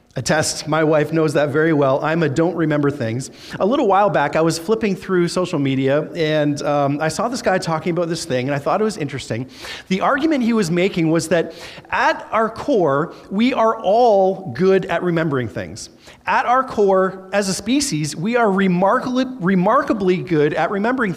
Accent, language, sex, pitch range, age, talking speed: American, English, male, 135-210 Hz, 40-59, 190 wpm